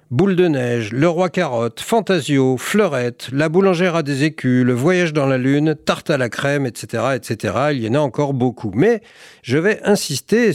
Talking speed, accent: 240 wpm, French